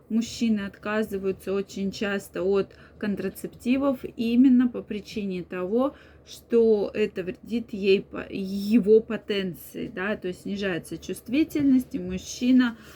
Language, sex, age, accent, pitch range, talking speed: Russian, female, 20-39, native, 195-240 Hz, 105 wpm